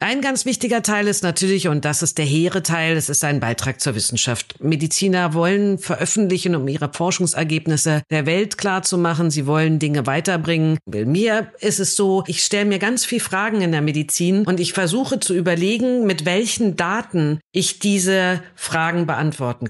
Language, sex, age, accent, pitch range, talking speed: German, female, 50-69, German, 155-200 Hz, 175 wpm